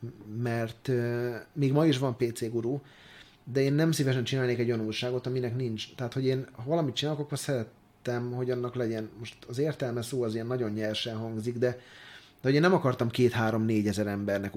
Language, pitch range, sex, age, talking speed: Hungarian, 105-135 Hz, male, 30-49, 185 wpm